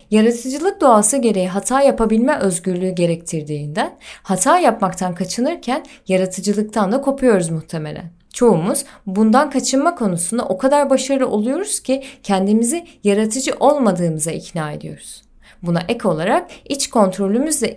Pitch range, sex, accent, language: 175-260 Hz, female, native, Turkish